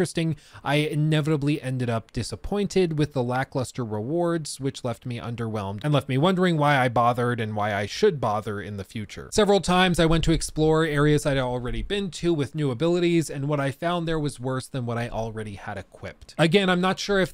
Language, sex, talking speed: English, male, 210 wpm